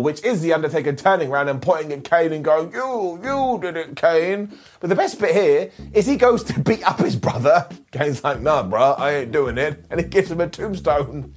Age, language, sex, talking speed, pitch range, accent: 30-49, English, male, 230 wpm, 150-225 Hz, British